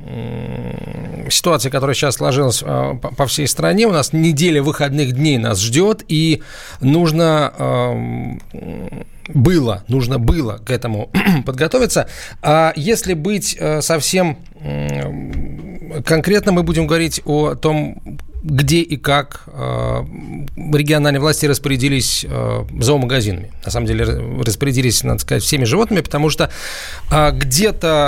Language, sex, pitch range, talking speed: Russian, male, 120-155 Hz, 105 wpm